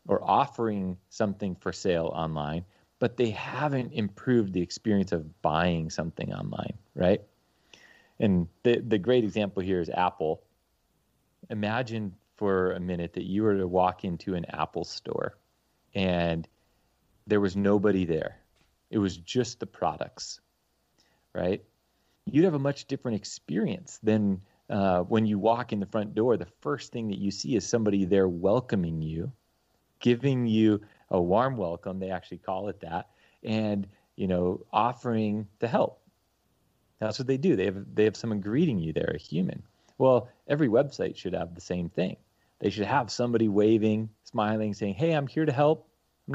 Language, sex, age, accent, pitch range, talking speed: English, male, 30-49, American, 95-115 Hz, 165 wpm